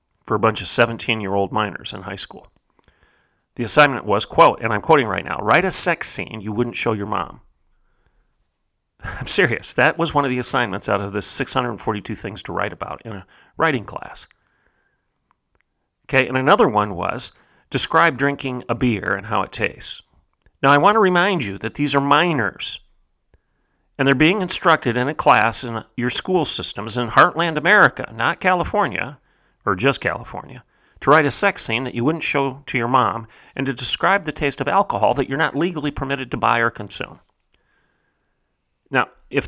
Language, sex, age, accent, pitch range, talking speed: English, male, 40-59, American, 110-140 Hz, 180 wpm